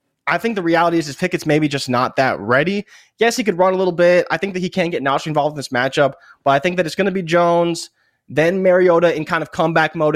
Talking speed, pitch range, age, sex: 270 wpm, 135-180 Hz, 20-39, male